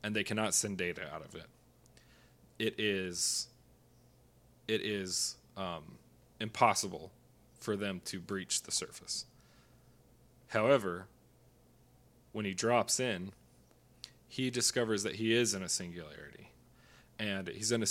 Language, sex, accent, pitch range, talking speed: English, male, American, 95-115 Hz, 125 wpm